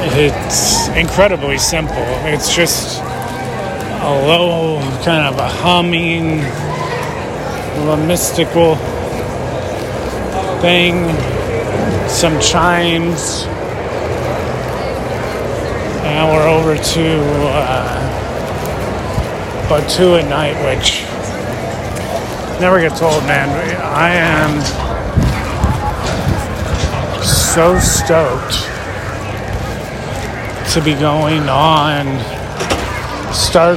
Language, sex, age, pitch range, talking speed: English, male, 30-49, 105-160 Hz, 75 wpm